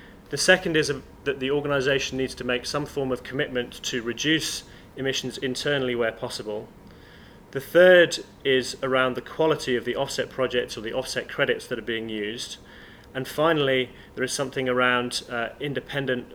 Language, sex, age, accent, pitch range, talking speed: English, male, 30-49, British, 120-135 Hz, 165 wpm